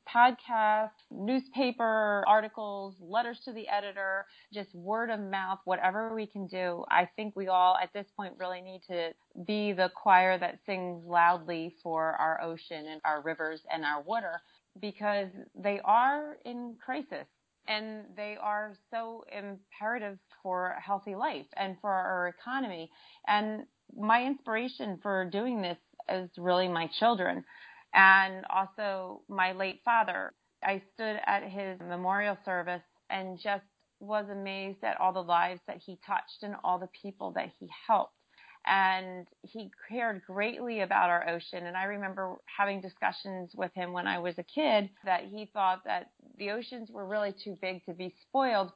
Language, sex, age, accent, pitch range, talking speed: English, female, 30-49, American, 180-215 Hz, 160 wpm